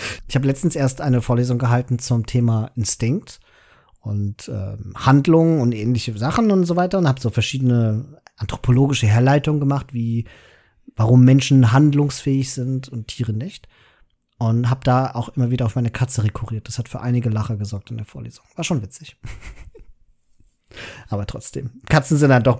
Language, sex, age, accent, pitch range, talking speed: German, male, 40-59, German, 120-145 Hz, 165 wpm